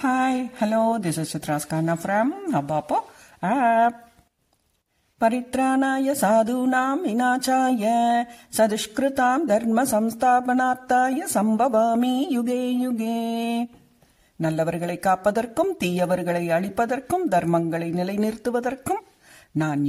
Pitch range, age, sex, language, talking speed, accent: 170-255 Hz, 60-79, female, English, 95 wpm, Indian